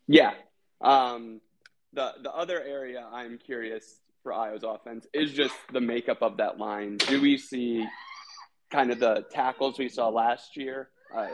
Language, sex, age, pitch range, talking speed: English, male, 20-39, 110-125 Hz, 160 wpm